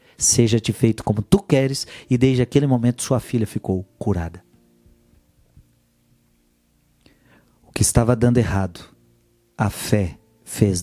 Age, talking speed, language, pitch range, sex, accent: 40-59, 115 wpm, Portuguese, 95-130 Hz, male, Brazilian